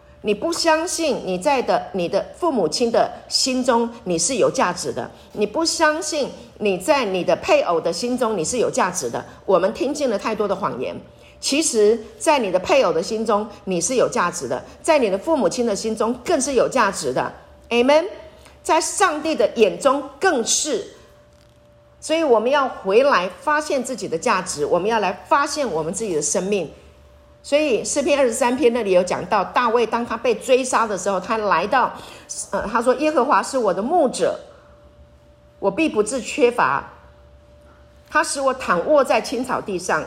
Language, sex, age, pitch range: Chinese, female, 40-59, 210-300 Hz